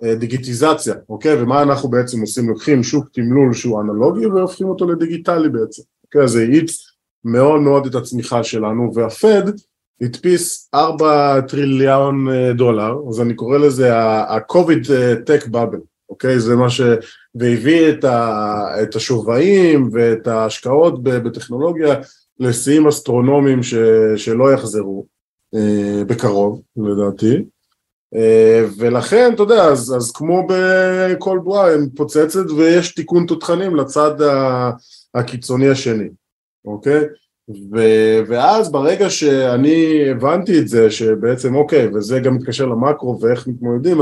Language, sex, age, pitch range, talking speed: Hebrew, male, 20-39, 115-150 Hz, 115 wpm